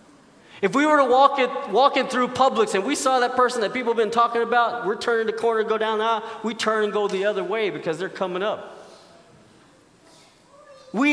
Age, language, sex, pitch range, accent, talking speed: 40-59, English, male, 195-245 Hz, American, 215 wpm